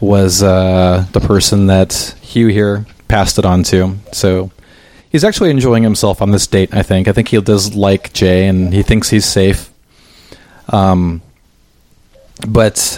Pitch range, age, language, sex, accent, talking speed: 95-110 Hz, 30-49, English, male, American, 155 wpm